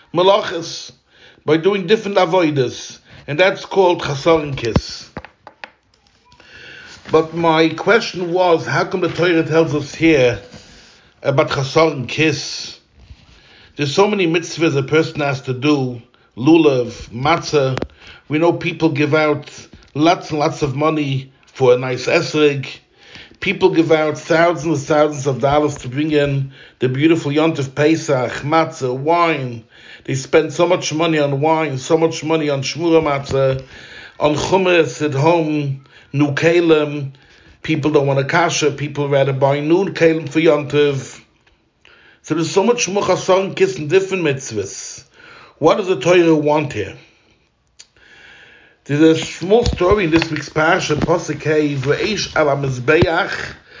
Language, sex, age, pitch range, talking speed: English, male, 60-79, 140-165 Hz, 135 wpm